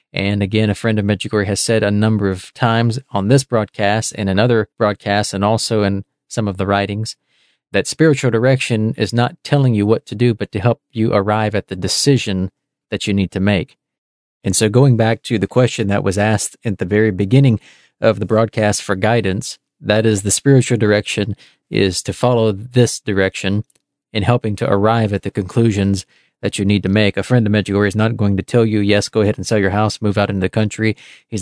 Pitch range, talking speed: 100-115 Hz, 215 wpm